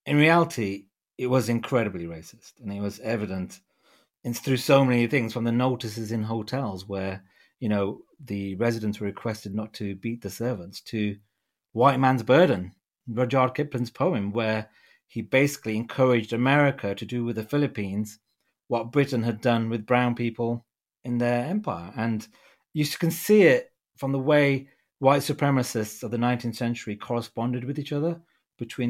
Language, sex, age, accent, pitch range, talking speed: English, male, 30-49, British, 105-135 Hz, 160 wpm